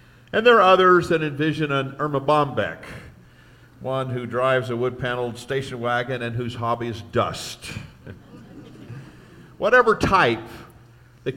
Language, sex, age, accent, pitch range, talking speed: English, male, 50-69, American, 115-150 Hz, 125 wpm